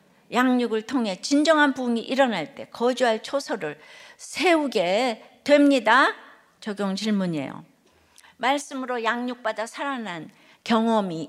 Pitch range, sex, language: 215-285 Hz, female, Korean